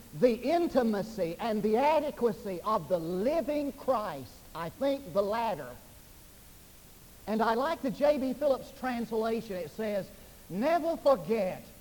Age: 50-69